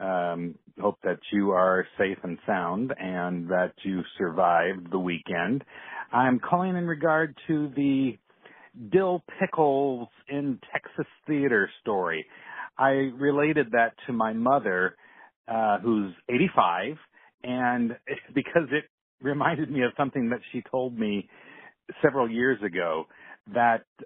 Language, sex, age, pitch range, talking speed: English, male, 50-69, 105-140 Hz, 125 wpm